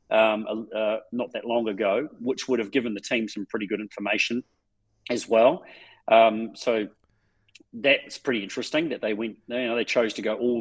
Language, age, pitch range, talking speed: English, 40-59, 110-130 Hz, 185 wpm